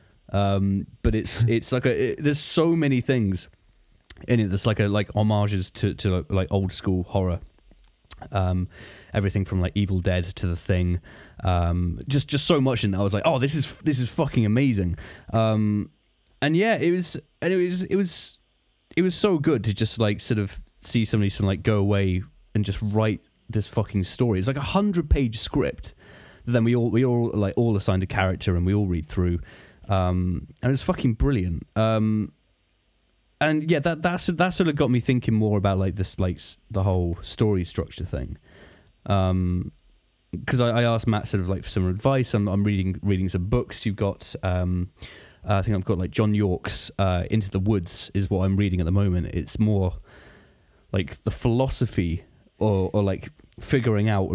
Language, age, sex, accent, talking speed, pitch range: English, 20-39, male, British, 200 wpm, 95-120 Hz